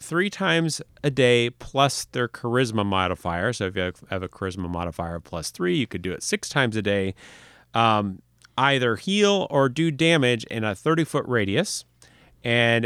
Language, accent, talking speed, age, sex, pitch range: English, American, 175 wpm, 30-49, male, 95-125 Hz